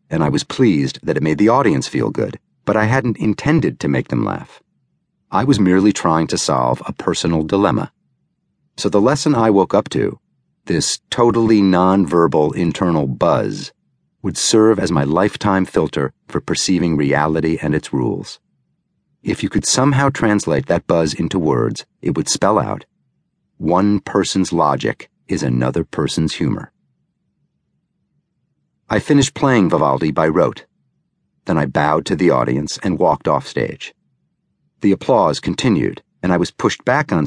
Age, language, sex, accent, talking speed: 40-59, English, male, American, 155 wpm